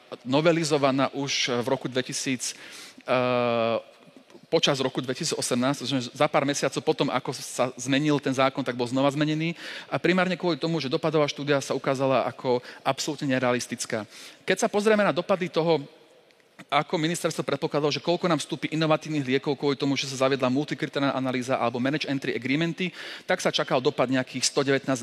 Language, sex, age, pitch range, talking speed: Slovak, male, 40-59, 130-160 Hz, 165 wpm